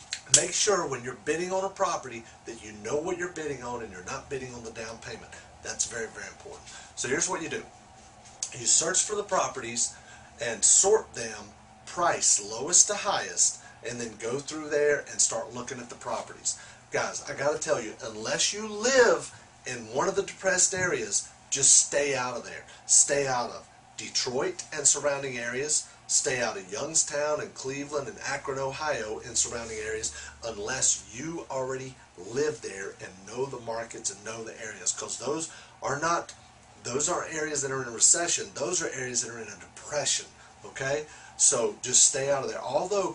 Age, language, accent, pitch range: 40-59, English, American, 125-180 Hz